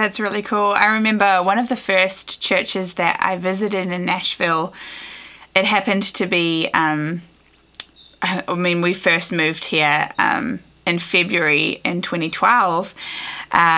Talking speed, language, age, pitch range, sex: 135 wpm, English, 20-39, 170-200 Hz, female